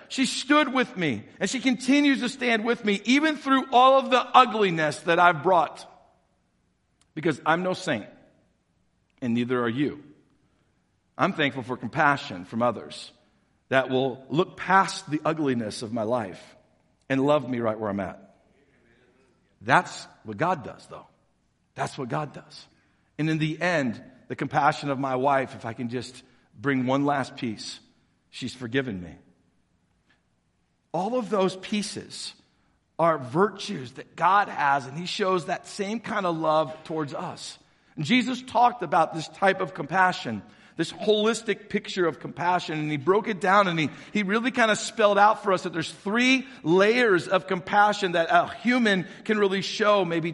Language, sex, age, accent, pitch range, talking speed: English, male, 50-69, American, 135-205 Hz, 165 wpm